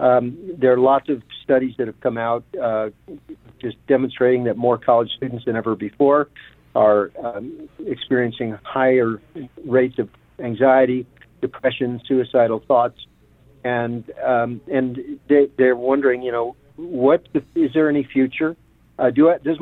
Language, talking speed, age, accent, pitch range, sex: English, 145 wpm, 60-79, American, 125-145 Hz, male